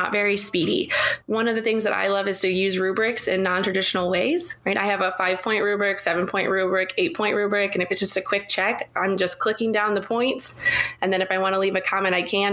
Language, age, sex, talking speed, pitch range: English, 20-39, female, 255 wpm, 185-225 Hz